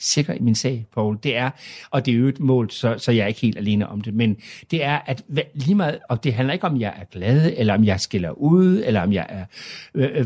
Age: 60-79